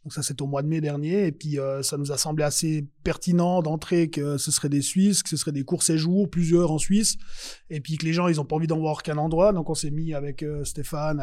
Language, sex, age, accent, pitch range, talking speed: French, male, 20-39, French, 145-175 Hz, 280 wpm